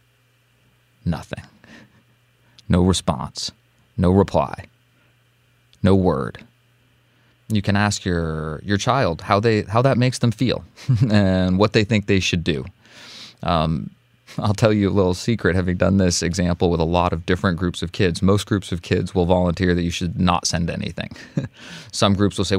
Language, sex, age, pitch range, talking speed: English, male, 30-49, 90-115 Hz, 165 wpm